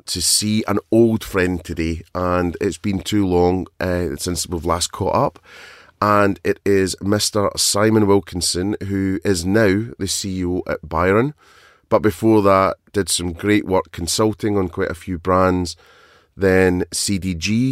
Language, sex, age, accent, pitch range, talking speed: English, male, 30-49, British, 90-100 Hz, 150 wpm